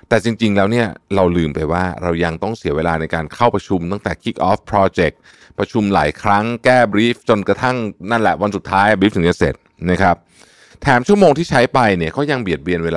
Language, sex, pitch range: Thai, male, 85-120 Hz